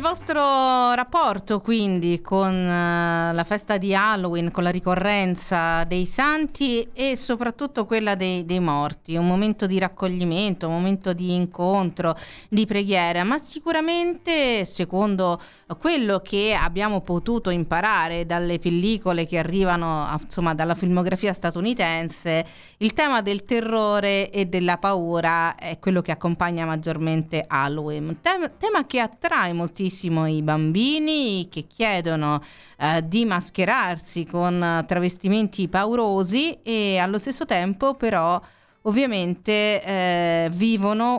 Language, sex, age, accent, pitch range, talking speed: Italian, female, 40-59, native, 175-230 Hz, 115 wpm